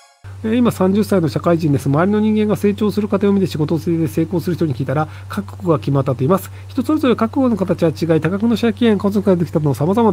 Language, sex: Japanese, male